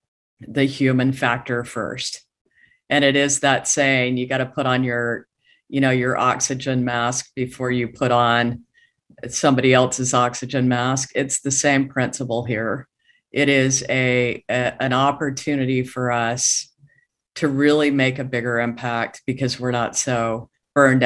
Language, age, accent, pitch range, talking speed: English, 50-69, American, 125-140 Hz, 150 wpm